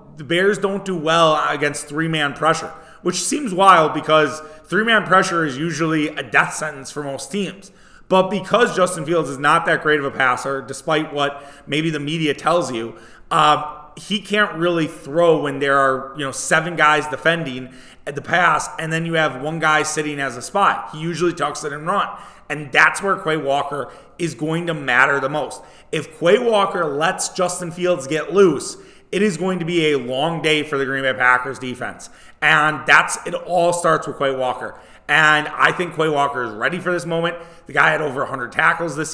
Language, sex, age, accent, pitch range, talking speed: English, male, 30-49, American, 145-170 Hz, 200 wpm